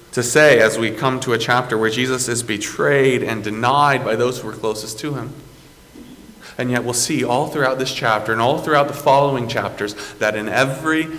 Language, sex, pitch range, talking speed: English, male, 115-170 Hz, 205 wpm